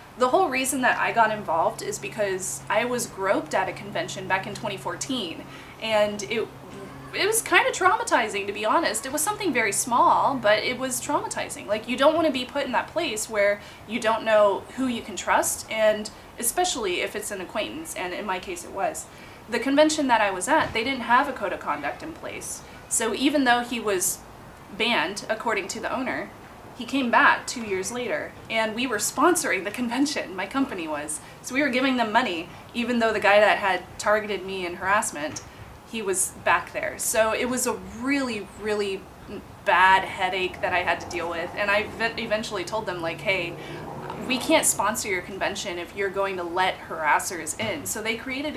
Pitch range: 200-275 Hz